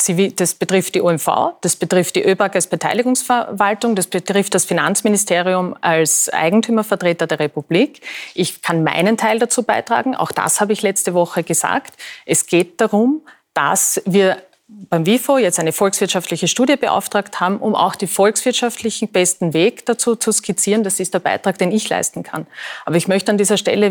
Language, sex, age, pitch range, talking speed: German, female, 30-49, 180-215 Hz, 170 wpm